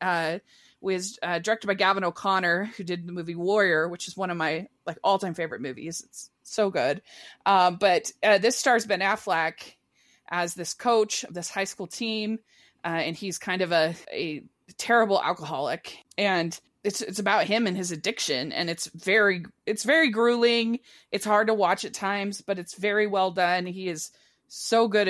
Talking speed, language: 190 wpm, English